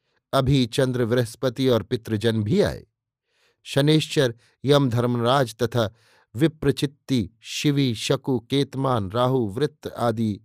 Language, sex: Hindi, male